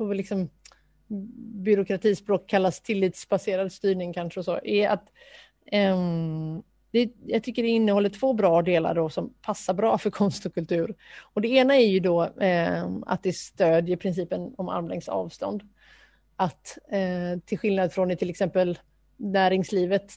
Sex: female